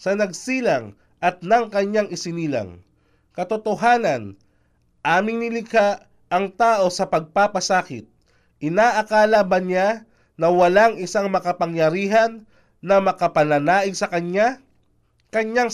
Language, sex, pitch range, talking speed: Filipino, male, 170-225 Hz, 95 wpm